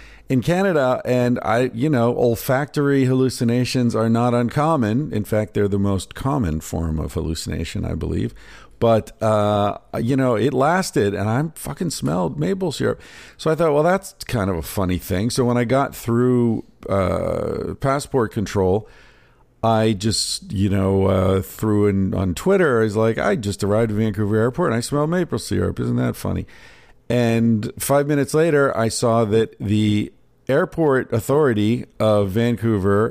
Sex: male